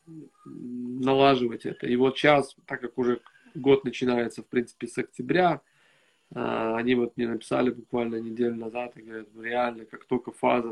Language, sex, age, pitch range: Russian, male, 20-39, 115-130 Hz